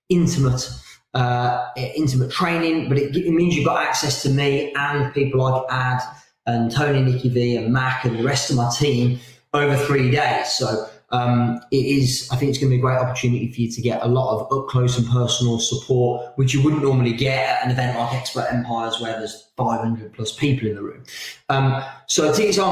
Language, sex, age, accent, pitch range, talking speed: English, male, 20-39, British, 125-140 Hz, 210 wpm